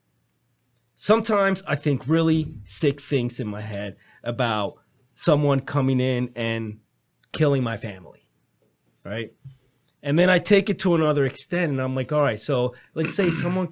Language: English